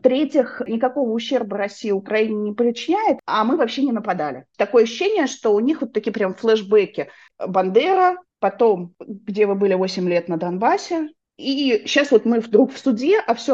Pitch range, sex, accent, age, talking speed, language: 175-230 Hz, female, native, 30-49, 175 wpm, Russian